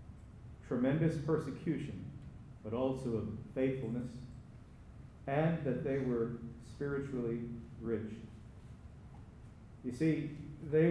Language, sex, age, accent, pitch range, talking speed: English, male, 50-69, American, 115-150 Hz, 85 wpm